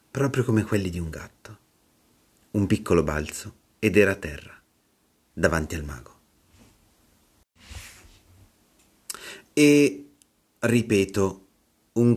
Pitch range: 85-110 Hz